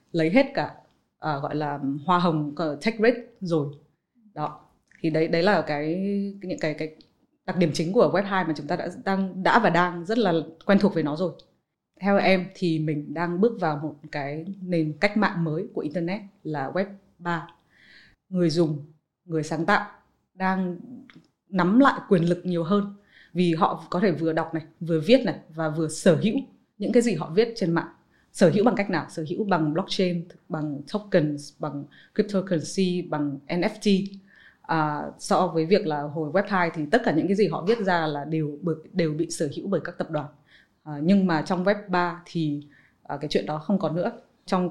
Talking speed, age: 195 wpm, 20-39